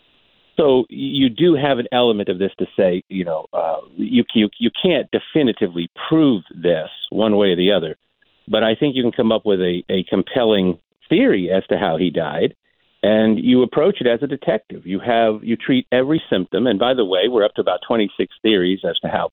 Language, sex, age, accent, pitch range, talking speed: English, male, 50-69, American, 105-135 Hz, 210 wpm